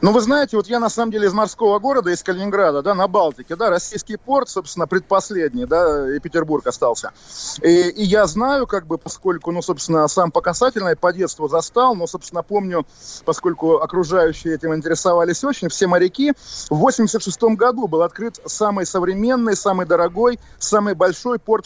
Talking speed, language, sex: 170 wpm, Russian, male